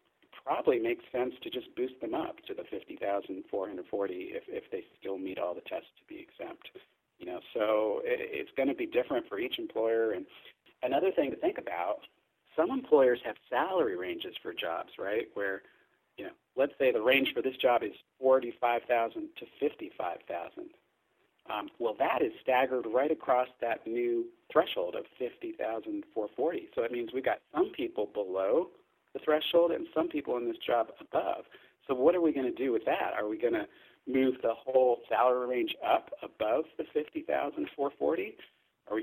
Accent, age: American, 50-69